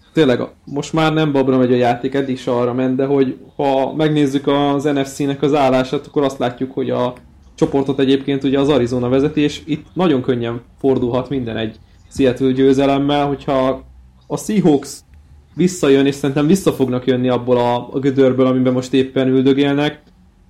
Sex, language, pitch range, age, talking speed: male, Hungarian, 125-140 Hz, 20-39, 165 wpm